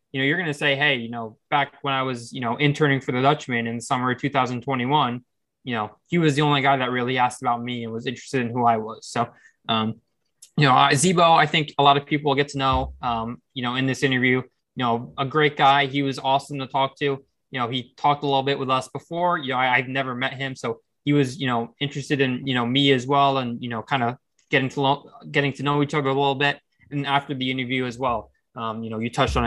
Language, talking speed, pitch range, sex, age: English, 265 wpm, 125-145 Hz, male, 20-39